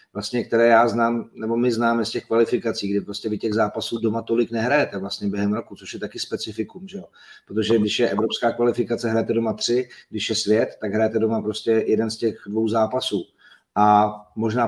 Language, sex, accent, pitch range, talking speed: Czech, male, native, 105-125 Hz, 200 wpm